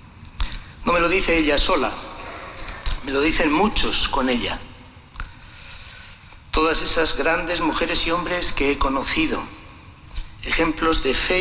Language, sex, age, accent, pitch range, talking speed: Spanish, male, 60-79, Spanish, 95-155 Hz, 125 wpm